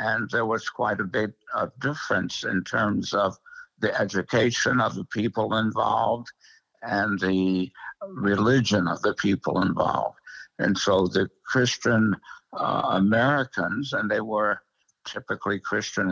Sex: male